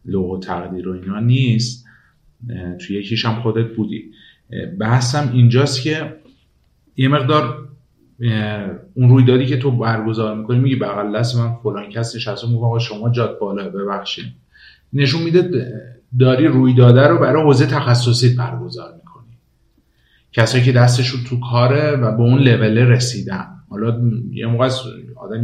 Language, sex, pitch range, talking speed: Persian, male, 115-145 Hz, 130 wpm